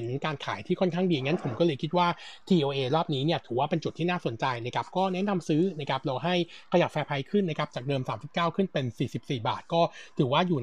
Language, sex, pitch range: Thai, male, 140-180 Hz